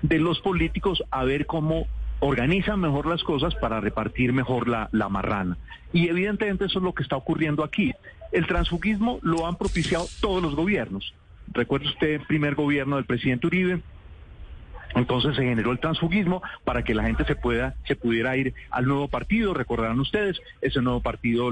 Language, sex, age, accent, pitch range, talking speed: Spanish, male, 40-59, Colombian, 125-180 Hz, 175 wpm